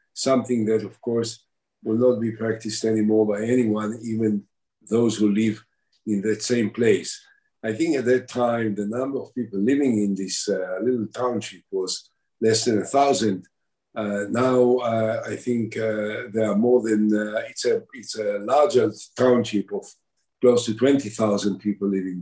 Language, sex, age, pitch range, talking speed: English, male, 50-69, 100-125 Hz, 165 wpm